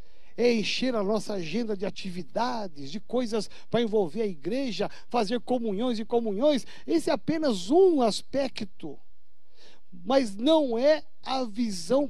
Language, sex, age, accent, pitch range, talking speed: Portuguese, male, 60-79, Brazilian, 205-265 Hz, 135 wpm